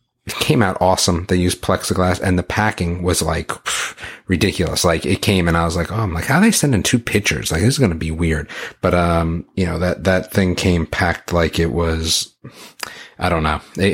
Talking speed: 225 wpm